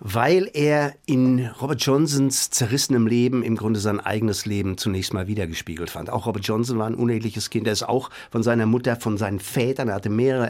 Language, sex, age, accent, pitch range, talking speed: German, male, 50-69, German, 110-130 Hz, 200 wpm